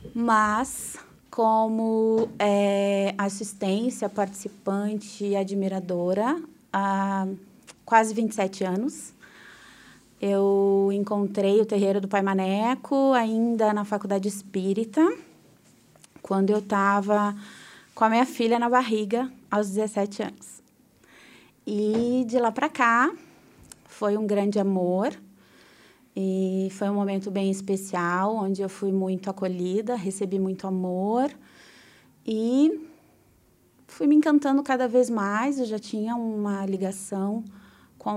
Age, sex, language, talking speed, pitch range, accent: 20-39, female, Portuguese, 110 wpm, 195-240 Hz, Brazilian